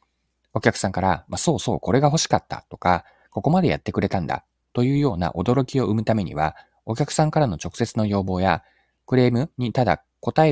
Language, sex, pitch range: Japanese, male, 75-115 Hz